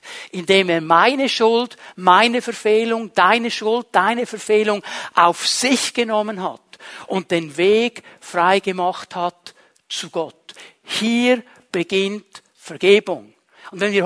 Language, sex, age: German, male, 60-79